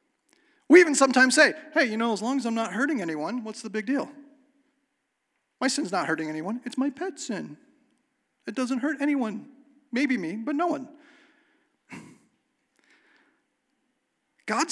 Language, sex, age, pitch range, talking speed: English, male, 40-59, 230-310 Hz, 150 wpm